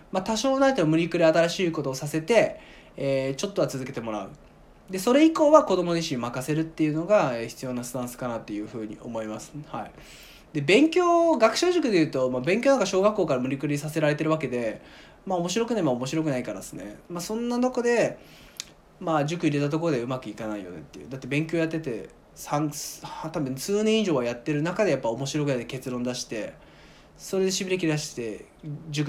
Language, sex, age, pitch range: Japanese, male, 20-39, 130-200 Hz